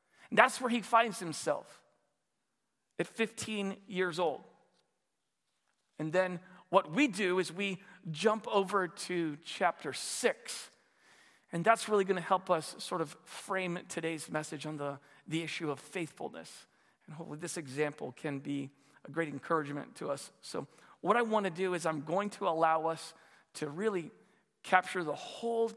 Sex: male